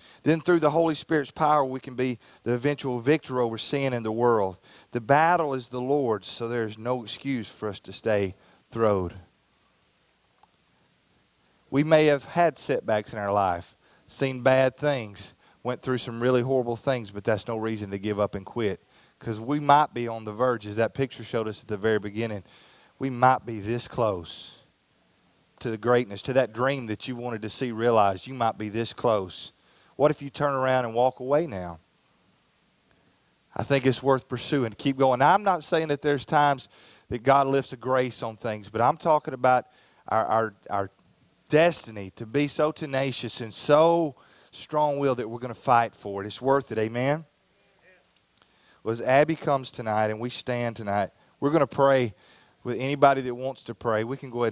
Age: 30-49